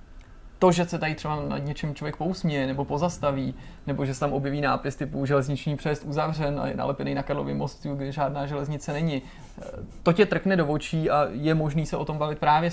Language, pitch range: Czech, 140-155 Hz